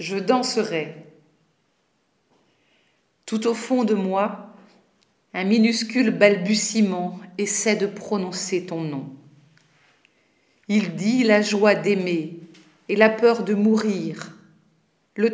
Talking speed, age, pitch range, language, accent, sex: 100 wpm, 50-69, 175-220 Hz, French, French, female